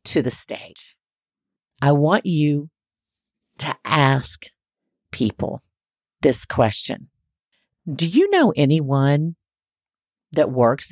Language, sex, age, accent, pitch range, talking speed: English, female, 50-69, American, 130-195 Hz, 95 wpm